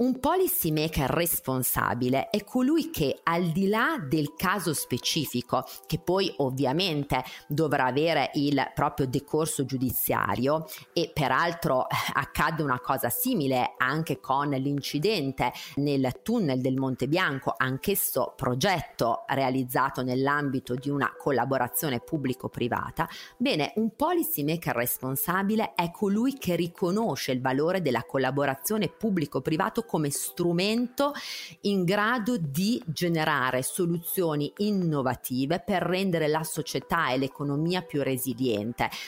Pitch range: 135-190 Hz